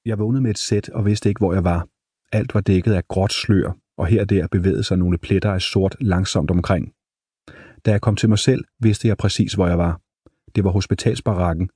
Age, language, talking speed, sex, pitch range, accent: 30-49, Danish, 225 wpm, male, 90-110 Hz, native